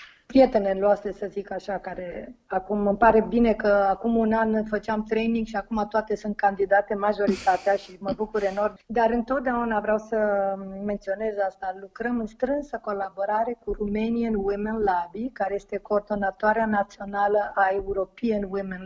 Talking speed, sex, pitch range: 150 wpm, female, 195-225 Hz